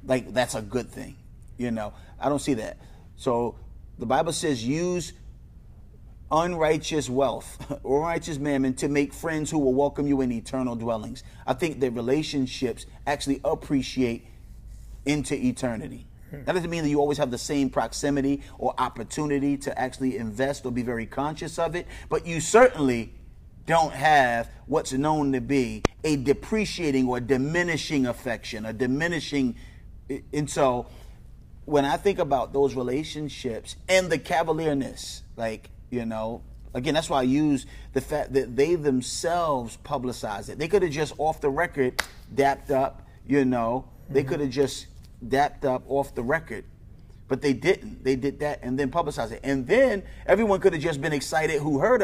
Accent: American